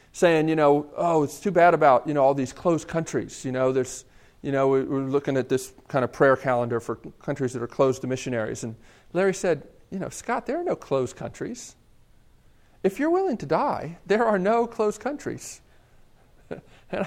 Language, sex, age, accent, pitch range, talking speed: English, male, 40-59, American, 140-215 Hz, 195 wpm